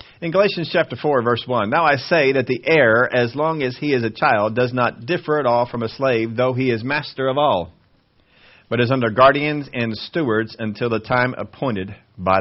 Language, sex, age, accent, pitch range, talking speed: English, male, 40-59, American, 105-130 Hz, 215 wpm